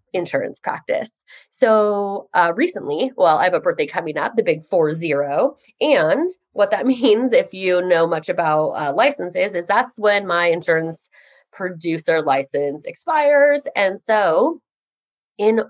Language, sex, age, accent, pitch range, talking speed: English, female, 20-39, American, 185-285 Hz, 145 wpm